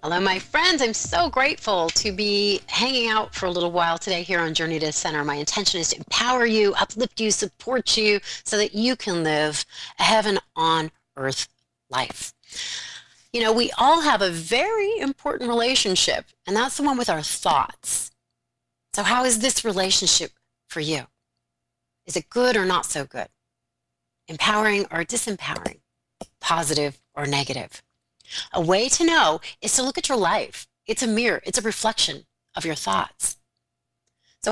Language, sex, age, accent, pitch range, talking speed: English, female, 30-49, American, 165-250 Hz, 170 wpm